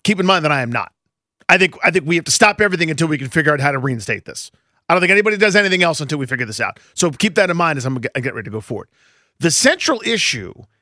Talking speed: 290 wpm